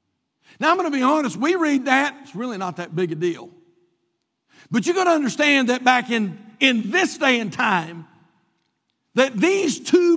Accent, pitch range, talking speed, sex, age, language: American, 215-295 Hz, 190 wpm, male, 50-69, English